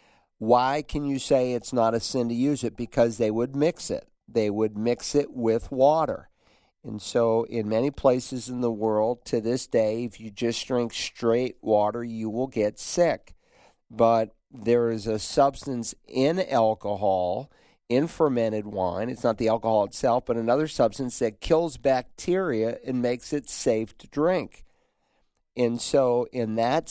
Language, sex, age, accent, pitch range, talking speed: English, male, 50-69, American, 110-125 Hz, 165 wpm